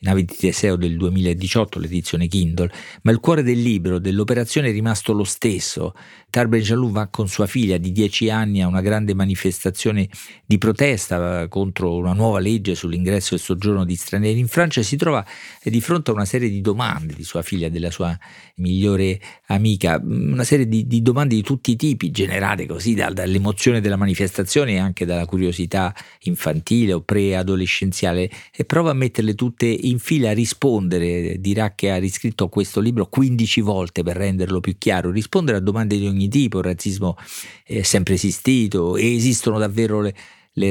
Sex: male